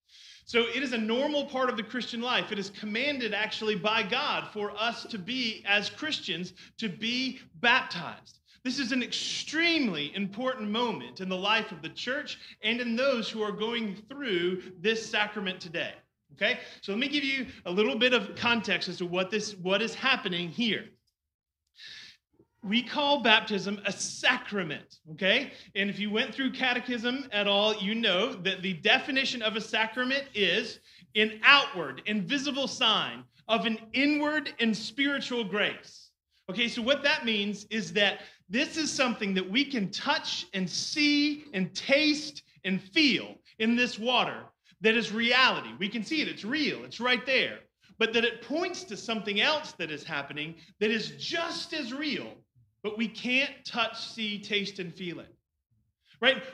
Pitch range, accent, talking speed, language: 200-260 Hz, American, 170 wpm, English